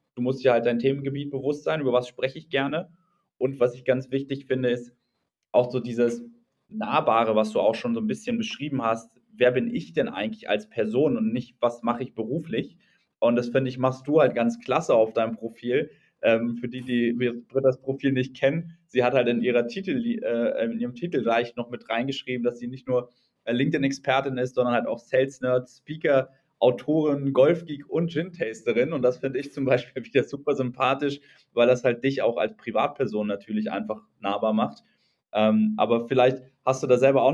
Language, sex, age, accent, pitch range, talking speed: German, male, 20-39, German, 120-140 Hz, 195 wpm